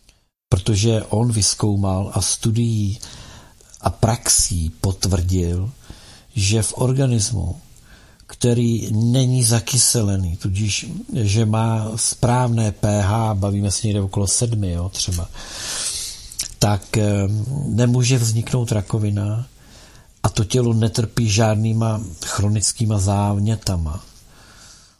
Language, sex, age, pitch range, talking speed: Czech, male, 50-69, 100-115 Hz, 90 wpm